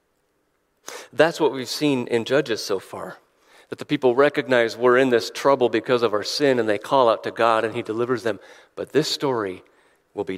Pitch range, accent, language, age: 135-225 Hz, American, English, 40-59